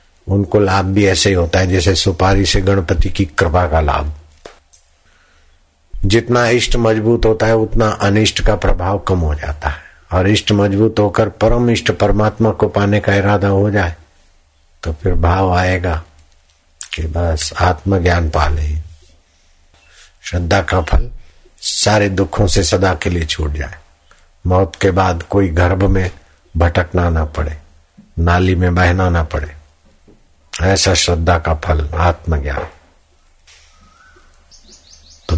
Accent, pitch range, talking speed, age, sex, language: native, 75-100 Hz, 140 wpm, 60-79, male, Hindi